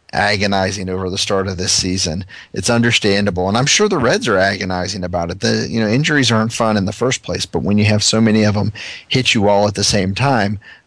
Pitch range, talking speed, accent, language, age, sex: 95-115 Hz, 235 wpm, American, English, 40-59, male